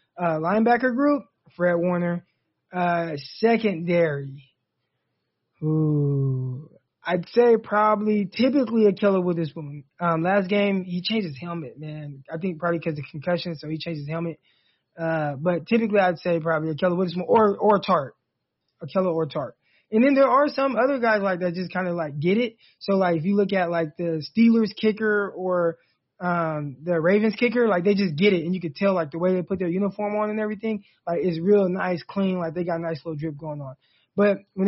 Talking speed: 210 wpm